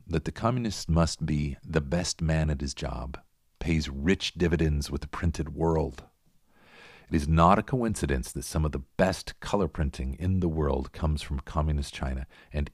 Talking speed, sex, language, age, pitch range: 180 wpm, male, English, 50-69, 70-85 Hz